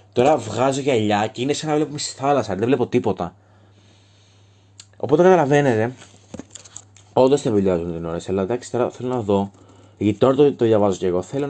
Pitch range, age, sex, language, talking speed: 95-120 Hz, 20-39, male, Greek, 185 wpm